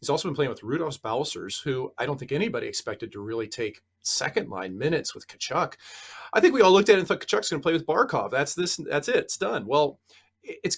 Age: 40-59